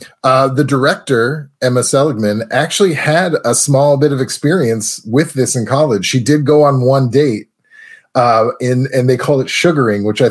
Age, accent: 30-49, American